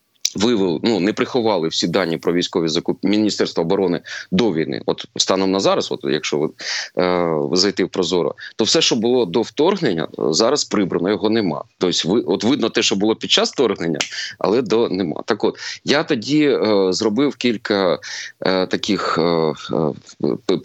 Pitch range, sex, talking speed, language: 95-125 Hz, male, 165 wpm, Ukrainian